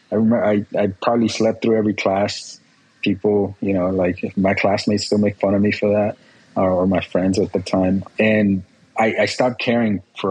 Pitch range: 95-110 Hz